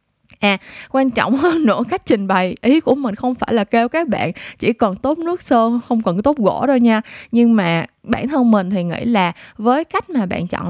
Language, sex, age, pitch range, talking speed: Vietnamese, female, 20-39, 185-240 Hz, 230 wpm